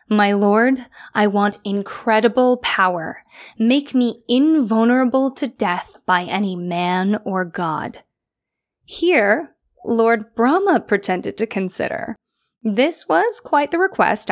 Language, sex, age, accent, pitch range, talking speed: English, female, 10-29, American, 195-255 Hz, 115 wpm